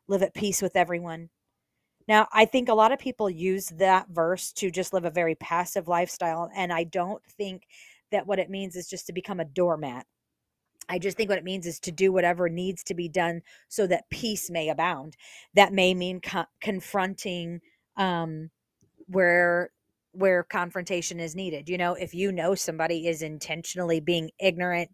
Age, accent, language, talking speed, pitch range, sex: 40-59, American, English, 180 wpm, 170-195 Hz, female